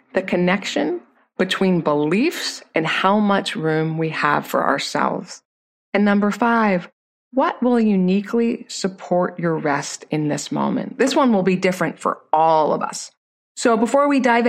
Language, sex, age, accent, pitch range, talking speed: English, female, 30-49, American, 170-225 Hz, 155 wpm